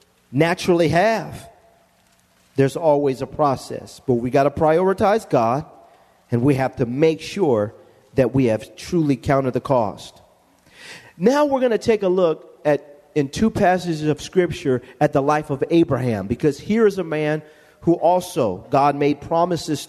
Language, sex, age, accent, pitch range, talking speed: English, male, 40-59, American, 145-180 Hz, 160 wpm